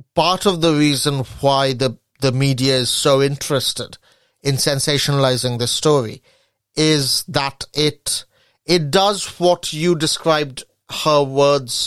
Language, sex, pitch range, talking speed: English, male, 130-155 Hz, 125 wpm